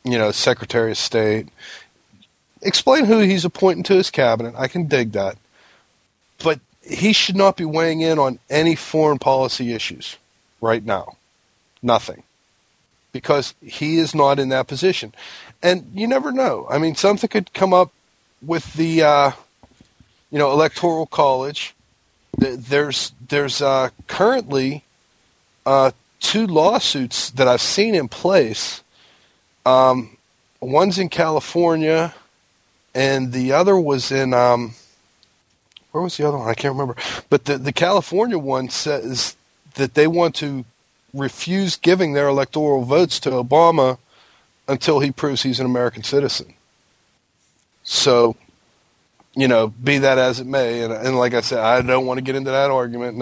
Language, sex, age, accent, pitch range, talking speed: English, male, 40-59, American, 125-165 Hz, 150 wpm